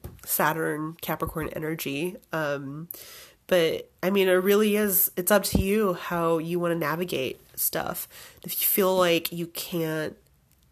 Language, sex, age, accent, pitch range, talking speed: English, female, 30-49, American, 165-210 Hz, 145 wpm